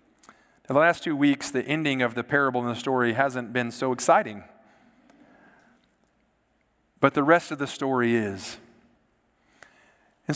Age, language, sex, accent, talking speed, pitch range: 40-59, English, male, American, 145 wpm, 135-175 Hz